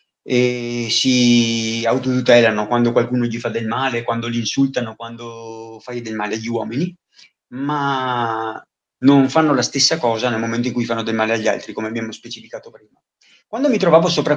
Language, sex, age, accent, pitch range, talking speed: Italian, male, 30-49, native, 115-150 Hz, 170 wpm